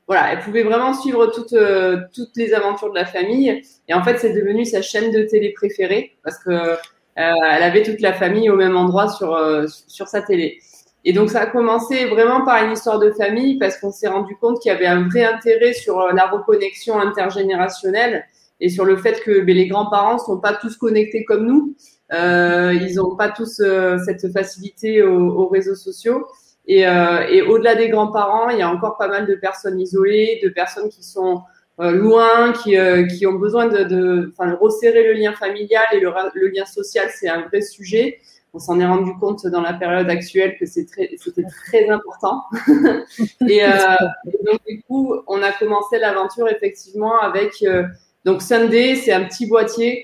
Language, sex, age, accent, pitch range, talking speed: French, female, 20-39, French, 185-230 Hz, 195 wpm